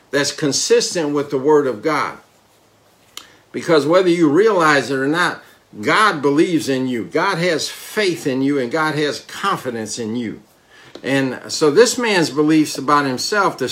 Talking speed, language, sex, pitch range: 160 wpm, English, male, 140-185 Hz